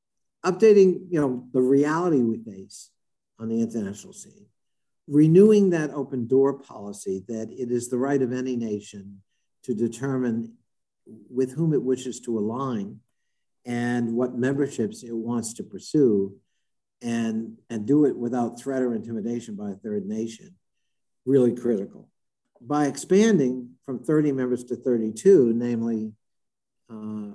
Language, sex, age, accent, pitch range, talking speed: English, male, 50-69, American, 115-140 Hz, 130 wpm